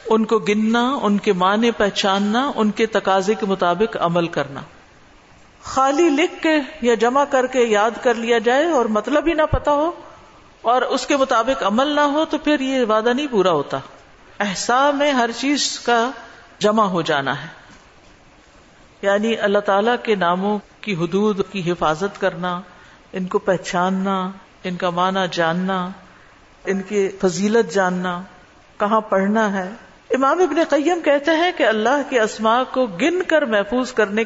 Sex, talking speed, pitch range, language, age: female, 160 wpm, 190-265 Hz, Urdu, 50-69